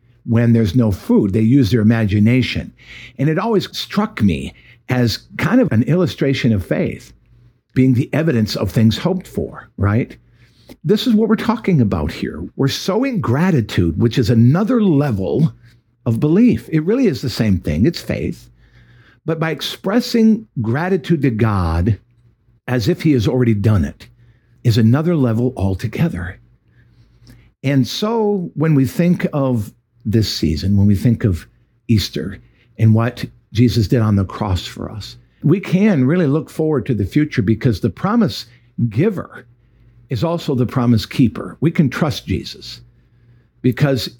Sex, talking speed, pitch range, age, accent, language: male, 155 wpm, 115-140 Hz, 60-79, American, English